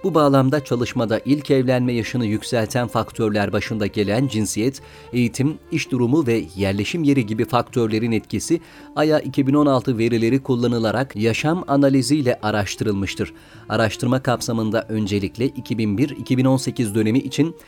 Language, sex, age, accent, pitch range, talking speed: Turkish, male, 40-59, native, 110-140 Hz, 115 wpm